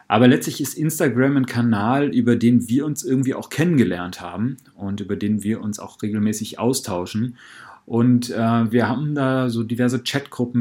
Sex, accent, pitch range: male, German, 105-125 Hz